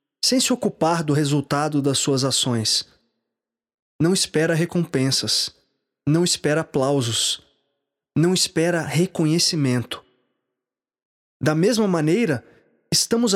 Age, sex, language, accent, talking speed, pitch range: 20-39, male, Portuguese, Brazilian, 95 wpm, 155-200 Hz